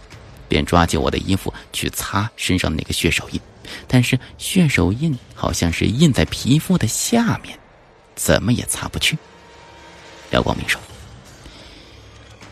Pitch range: 85-125 Hz